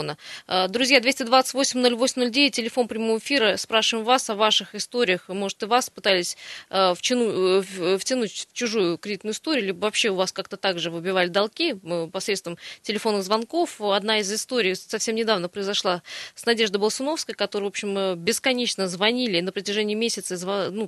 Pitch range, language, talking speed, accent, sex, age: 195-235 Hz, Russian, 130 wpm, native, female, 20-39